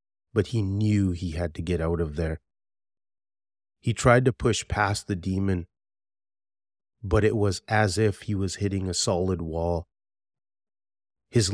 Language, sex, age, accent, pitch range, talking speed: English, male, 30-49, American, 90-110 Hz, 150 wpm